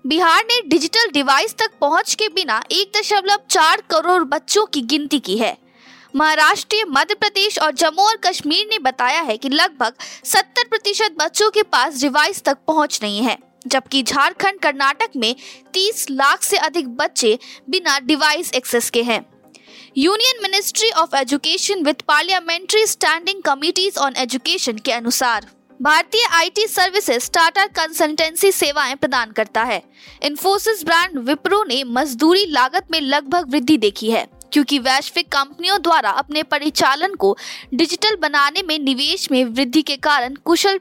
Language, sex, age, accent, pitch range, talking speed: Hindi, female, 20-39, native, 265-370 Hz, 150 wpm